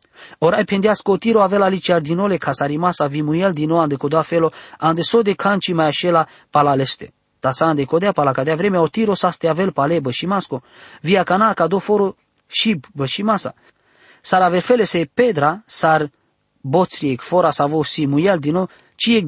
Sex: male